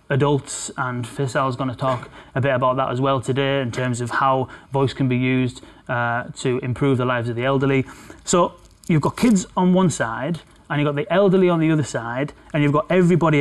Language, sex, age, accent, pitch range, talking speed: English, male, 30-49, British, 125-150 Hz, 220 wpm